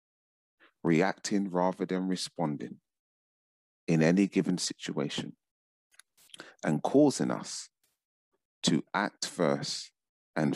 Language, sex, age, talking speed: English, male, 30-49, 85 wpm